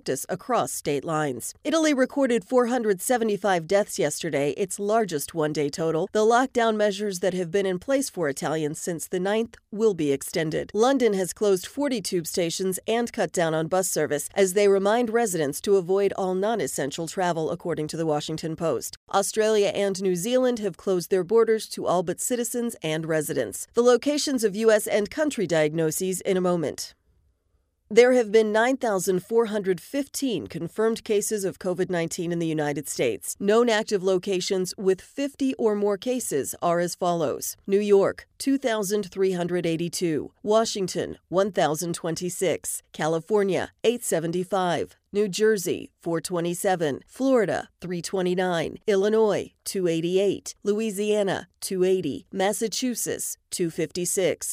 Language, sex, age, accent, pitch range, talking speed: English, female, 40-59, American, 170-220 Hz, 130 wpm